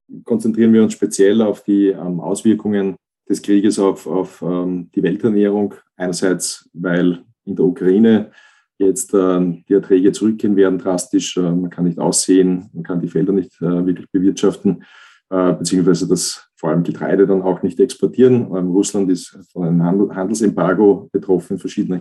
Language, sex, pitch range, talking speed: German, male, 90-100 Hz, 145 wpm